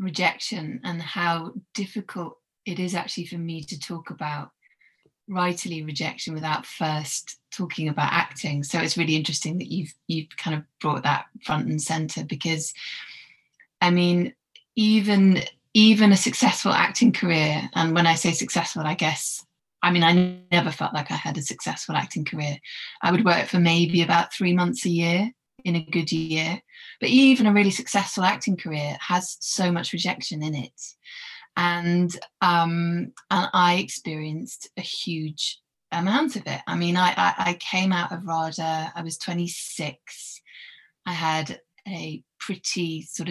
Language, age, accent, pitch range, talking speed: English, 20-39, British, 160-185 Hz, 160 wpm